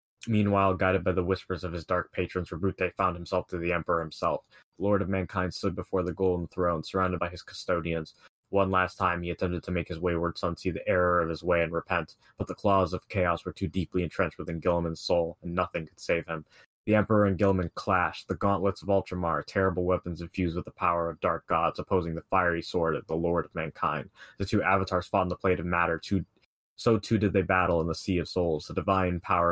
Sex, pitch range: male, 85-95 Hz